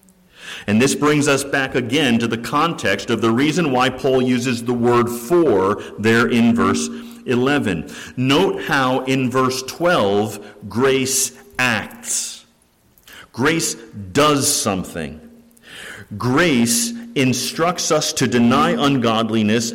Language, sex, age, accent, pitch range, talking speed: English, male, 50-69, American, 100-135 Hz, 115 wpm